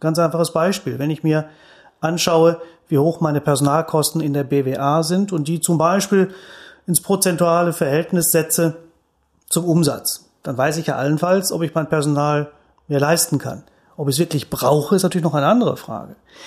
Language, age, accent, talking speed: German, 30-49, German, 175 wpm